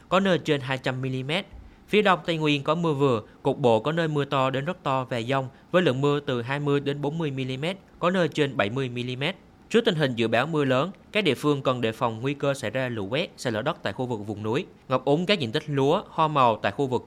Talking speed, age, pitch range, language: 260 wpm, 20-39, 120-160 Hz, Vietnamese